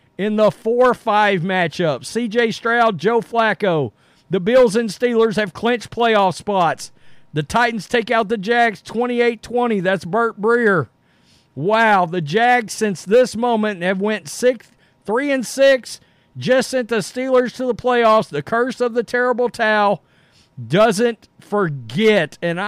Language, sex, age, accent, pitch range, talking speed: English, male, 50-69, American, 170-235 Hz, 135 wpm